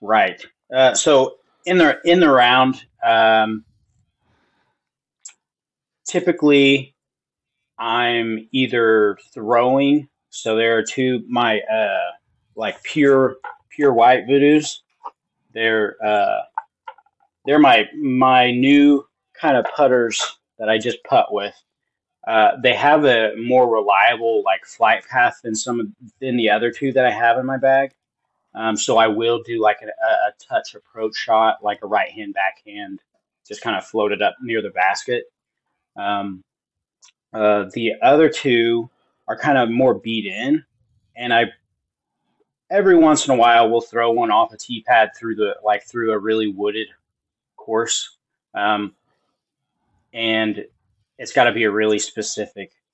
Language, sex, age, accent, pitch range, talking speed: English, male, 30-49, American, 110-140 Hz, 140 wpm